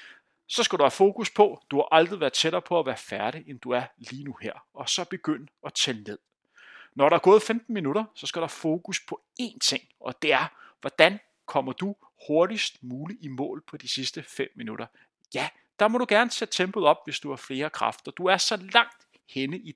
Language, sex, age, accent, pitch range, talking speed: Danish, male, 30-49, native, 135-195 Hz, 230 wpm